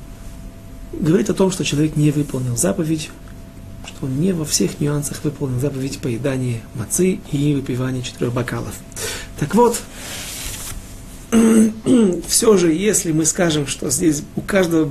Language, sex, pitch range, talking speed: Russian, male, 130-195 Hz, 135 wpm